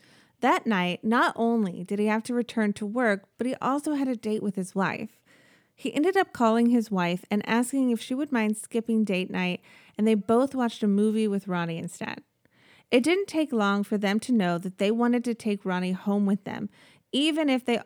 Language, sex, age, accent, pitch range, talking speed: English, female, 30-49, American, 195-240 Hz, 215 wpm